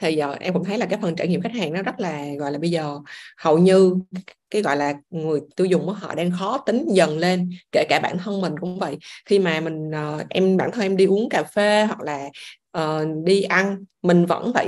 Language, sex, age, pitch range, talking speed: Vietnamese, female, 20-39, 160-200 Hz, 245 wpm